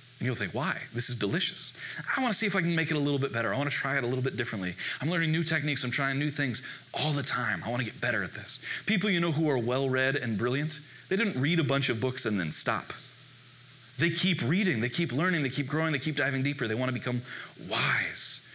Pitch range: 115-145 Hz